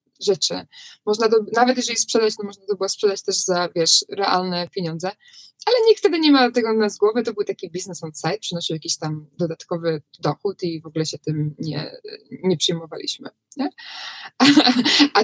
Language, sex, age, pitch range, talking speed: Polish, female, 20-39, 175-225 Hz, 180 wpm